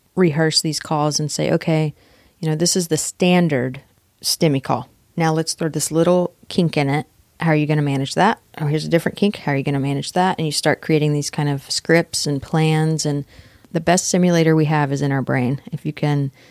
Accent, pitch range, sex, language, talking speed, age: American, 140-165 Hz, female, English, 235 wpm, 30-49